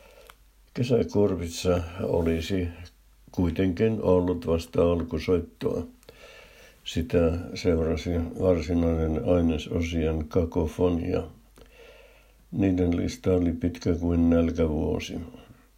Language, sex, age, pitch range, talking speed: Finnish, male, 60-79, 85-90 Hz, 65 wpm